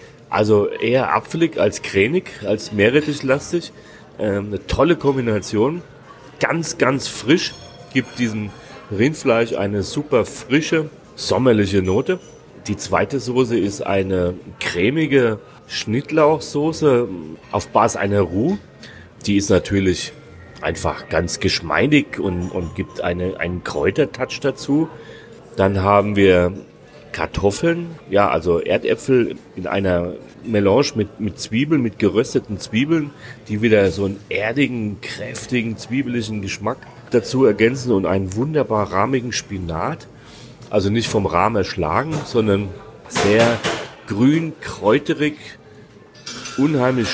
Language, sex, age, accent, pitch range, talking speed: German, male, 30-49, German, 100-140 Hz, 110 wpm